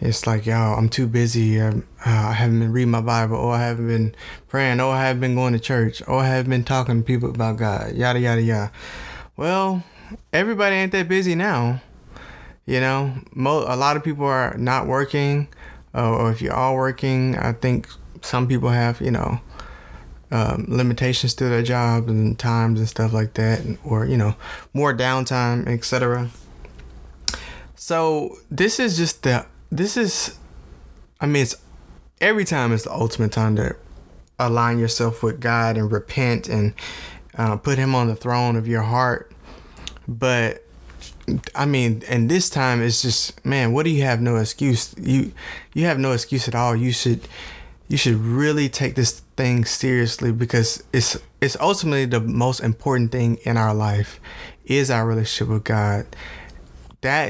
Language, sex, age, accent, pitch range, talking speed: English, male, 20-39, American, 115-130 Hz, 175 wpm